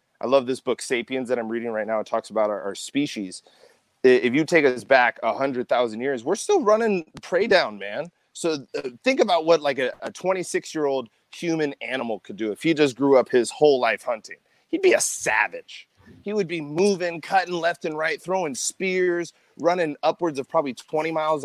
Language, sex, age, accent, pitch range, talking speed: English, male, 30-49, American, 115-150 Hz, 200 wpm